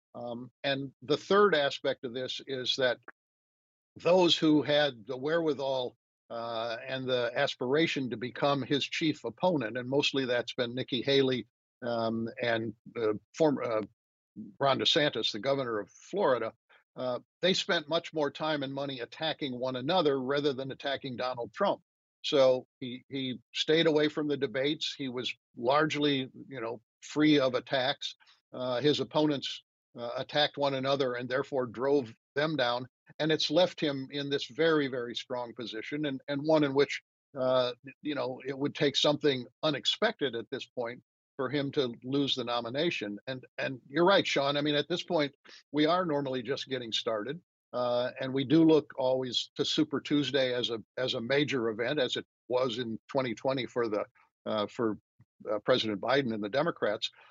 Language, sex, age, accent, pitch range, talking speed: English, male, 50-69, American, 120-145 Hz, 170 wpm